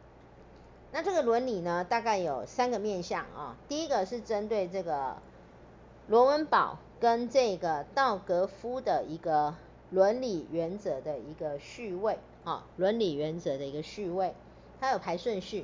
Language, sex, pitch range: Chinese, female, 160-220 Hz